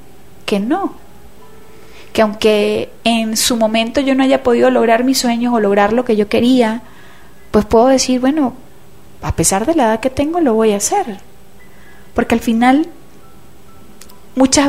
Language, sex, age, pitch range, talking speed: Spanish, female, 30-49, 215-260 Hz, 160 wpm